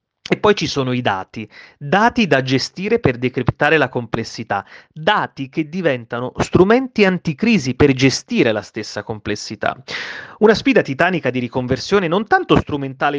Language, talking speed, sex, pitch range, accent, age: Italian, 140 wpm, male, 130-185 Hz, native, 30-49